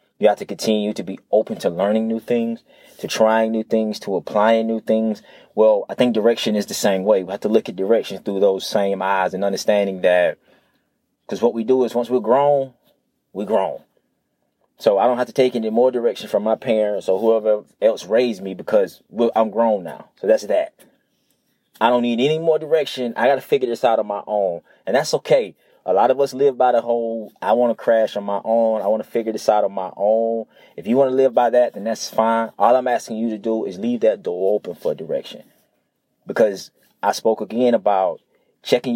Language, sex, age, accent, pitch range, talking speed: English, male, 20-39, American, 110-125 Hz, 225 wpm